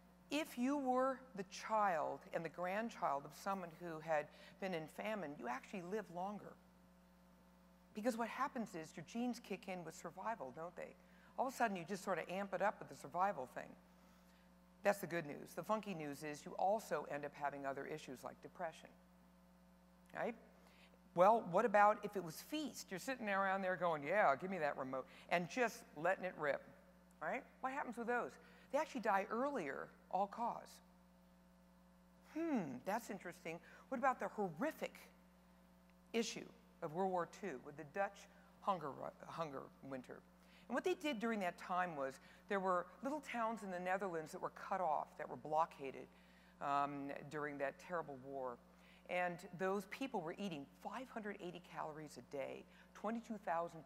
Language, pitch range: English, 130-205 Hz